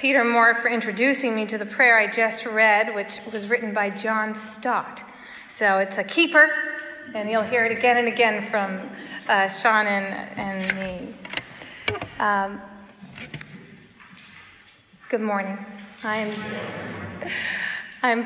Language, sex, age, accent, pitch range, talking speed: English, female, 30-49, American, 215-265 Hz, 130 wpm